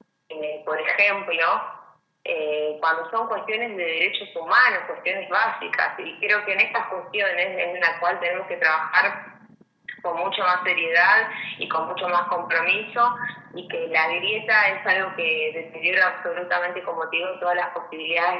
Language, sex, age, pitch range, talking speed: Spanish, female, 20-39, 170-200 Hz, 150 wpm